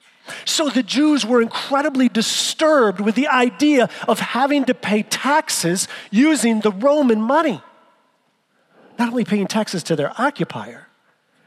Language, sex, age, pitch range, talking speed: English, male, 40-59, 195-270 Hz, 130 wpm